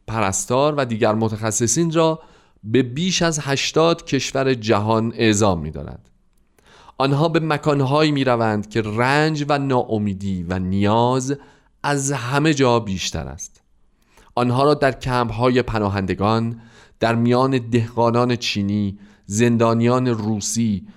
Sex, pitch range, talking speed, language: male, 105-135 Hz, 115 wpm, Persian